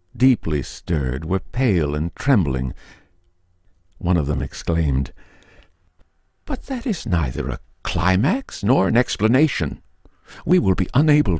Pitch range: 75-95 Hz